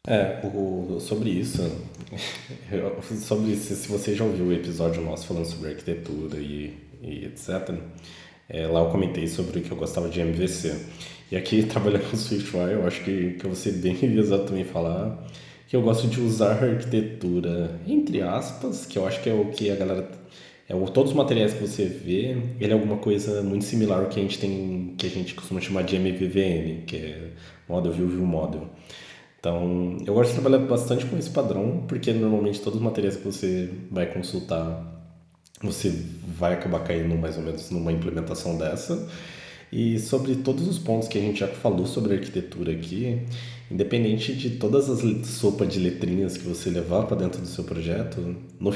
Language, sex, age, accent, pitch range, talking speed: Portuguese, male, 20-39, Brazilian, 85-110 Hz, 185 wpm